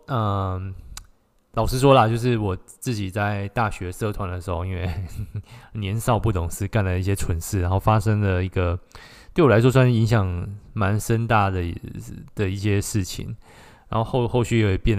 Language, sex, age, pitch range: Chinese, male, 20-39, 100-125 Hz